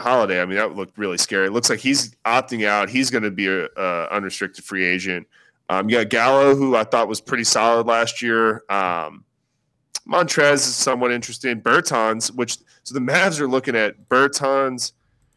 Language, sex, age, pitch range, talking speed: English, male, 20-39, 110-135 Hz, 185 wpm